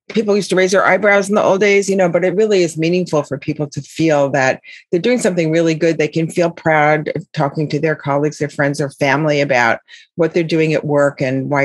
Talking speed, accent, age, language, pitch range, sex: 245 wpm, American, 40-59, English, 145-175 Hz, female